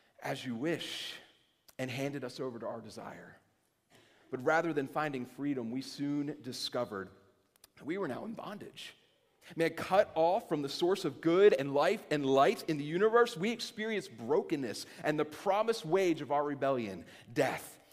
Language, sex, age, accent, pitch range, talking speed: English, male, 30-49, American, 135-200 Hz, 165 wpm